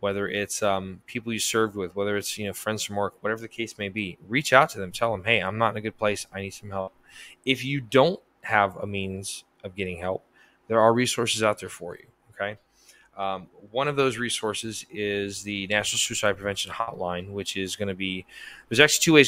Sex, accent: male, American